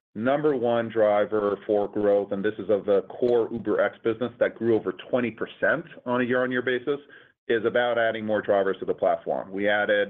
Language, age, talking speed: English, 40-59, 185 wpm